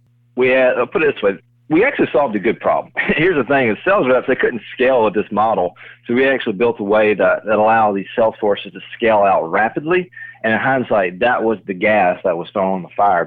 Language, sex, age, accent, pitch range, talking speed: English, male, 40-59, American, 105-125 Hz, 245 wpm